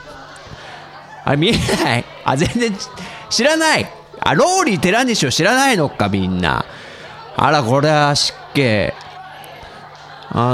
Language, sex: Japanese, male